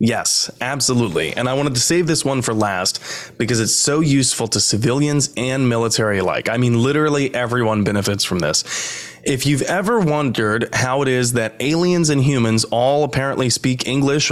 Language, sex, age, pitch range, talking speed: English, male, 20-39, 110-140 Hz, 175 wpm